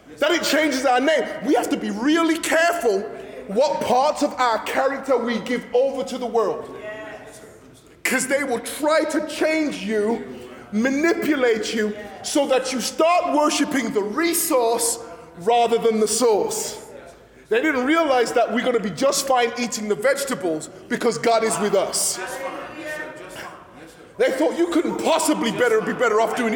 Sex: male